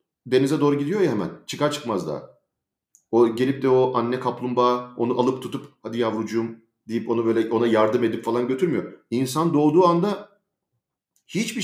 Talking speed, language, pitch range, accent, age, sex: 160 wpm, Turkish, 115-150 Hz, native, 40-59, male